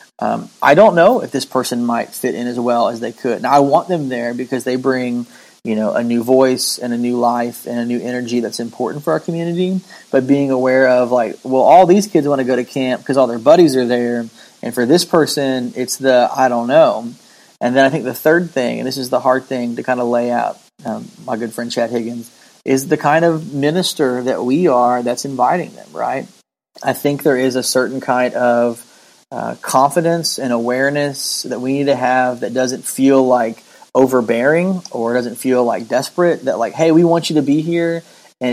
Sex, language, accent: male, English, American